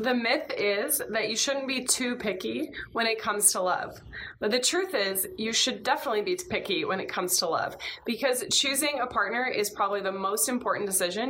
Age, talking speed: 20-39, 200 wpm